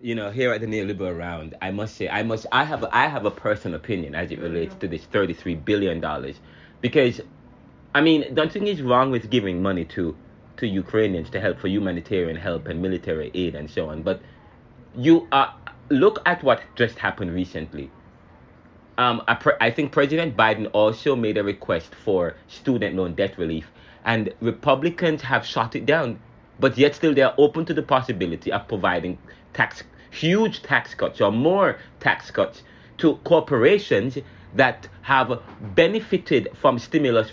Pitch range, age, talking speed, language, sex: 100-140 Hz, 30-49, 170 wpm, English, male